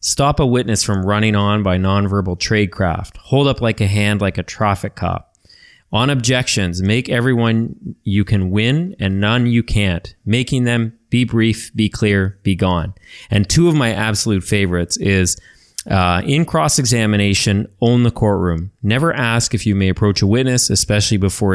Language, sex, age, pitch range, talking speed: English, male, 30-49, 100-120 Hz, 165 wpm